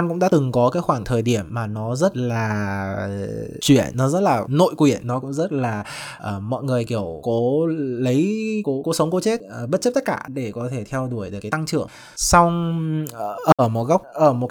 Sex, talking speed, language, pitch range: male, 225 wpm, Vietnamese, 115-150 Hz